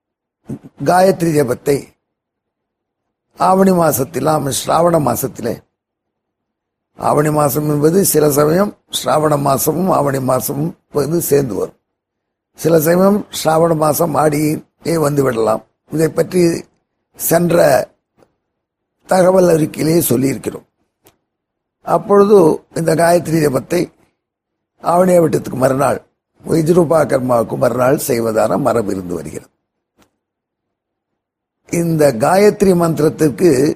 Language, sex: Tamil, male